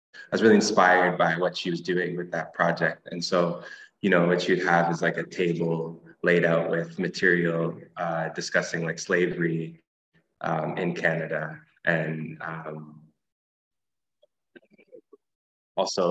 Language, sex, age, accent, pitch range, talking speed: English, male, 20-39, American, 80-90 Hz, 140 wpm